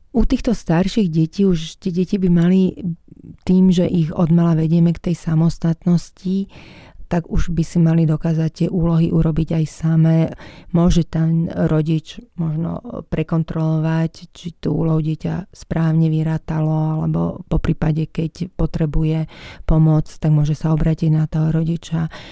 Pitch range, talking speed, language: 160-180 Hz, 140 wpm, Slovak